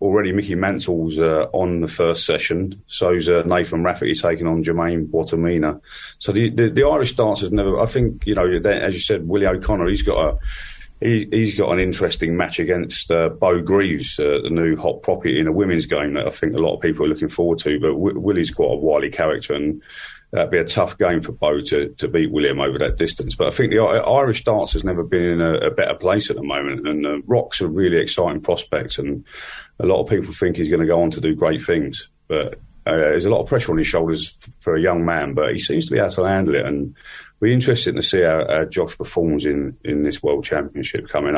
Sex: male